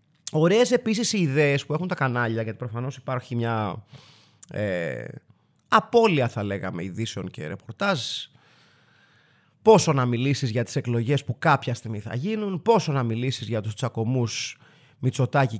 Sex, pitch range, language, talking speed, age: male, 120-175 Hz, Greek, 140 wpm, 30-49